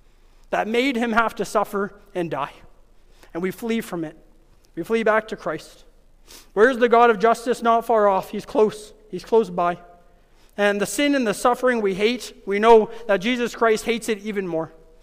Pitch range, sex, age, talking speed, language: 185-230 Hz, male, 30-49, 195 wpm, English